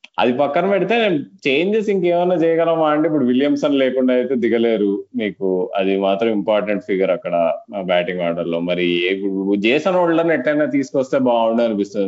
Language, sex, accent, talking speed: Telugu, male, native, 145 wpm